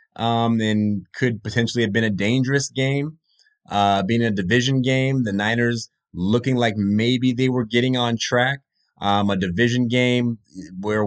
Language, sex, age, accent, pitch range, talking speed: English, male, 30-49, American, 100-125 Hz, 155 wpm